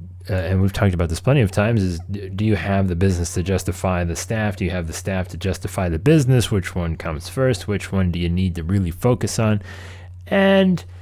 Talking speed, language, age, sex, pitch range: 230 wpm, English, 30-49, male, 90-120 Hz